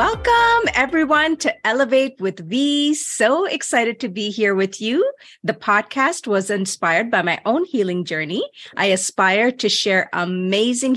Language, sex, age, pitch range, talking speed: English, female, 30-49, 180-245 Hz, 150 wpm